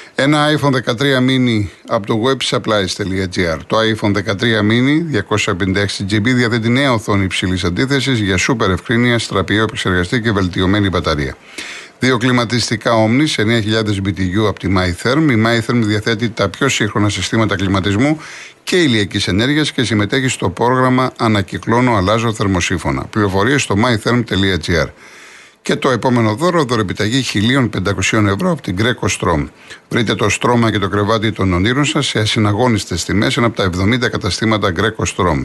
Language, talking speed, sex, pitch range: Greek, 140 wpm, male, 95-120 Hz